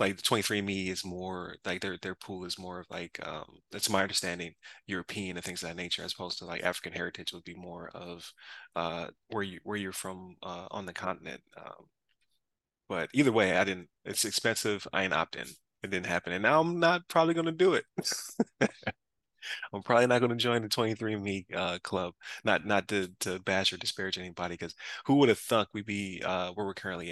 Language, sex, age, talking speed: English, male, 20-39, 215 wpm